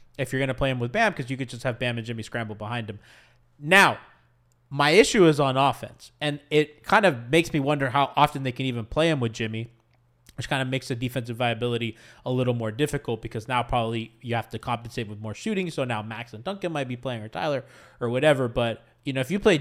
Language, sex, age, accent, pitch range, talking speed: English, male, 20-39, American, 120-155 Hz, 245 wpm